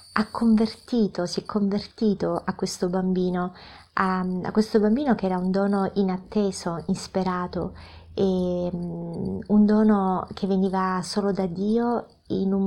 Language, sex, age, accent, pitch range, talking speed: Italian, female, 30-49, native, 175-205 Hz, 130 wpm